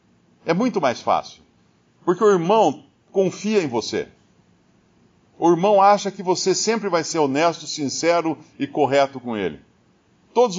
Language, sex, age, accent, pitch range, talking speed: Portuguese, male, 50-69, Brazilian, 130-175 Hz, 140 wpm